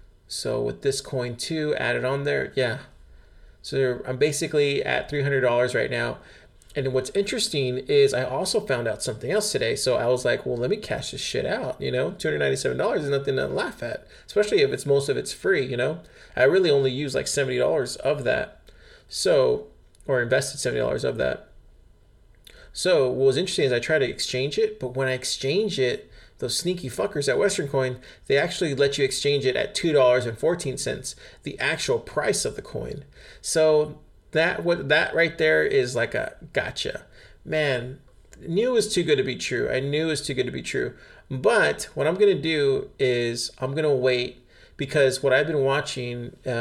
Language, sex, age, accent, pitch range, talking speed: English, male, 30-49, American, 125-175 Hz, 190 wpm